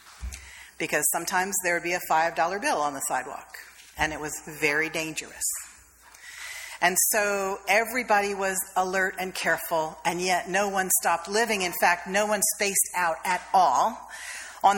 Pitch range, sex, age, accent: 170-220 Hz, female, 40-59, American